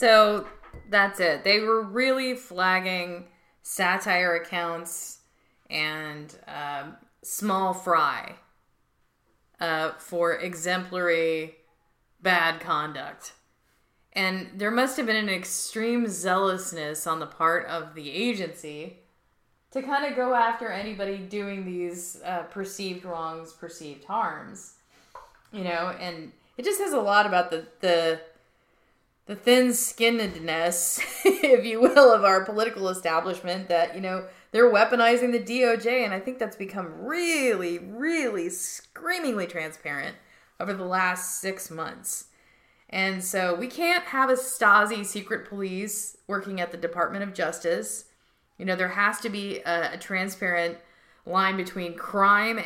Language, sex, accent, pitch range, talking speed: English, female, American, 170-220 Hz, 130 wpm